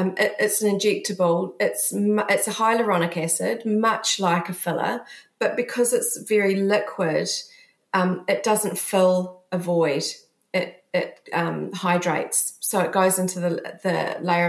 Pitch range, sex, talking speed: 175-210 Hz, female, 140 wpm